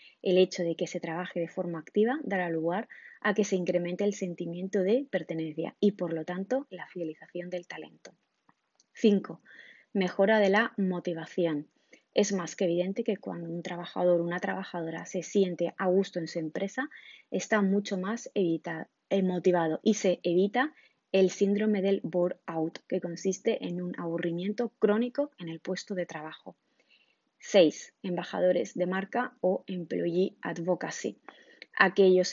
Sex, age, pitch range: female, 20-39, 170-200 Hz